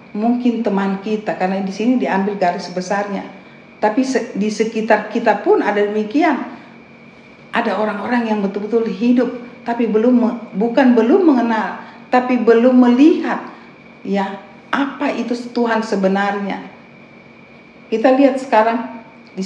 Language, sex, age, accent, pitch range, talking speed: Indonesian, female, 50-69, native, 205-245 Hz, 115 wpm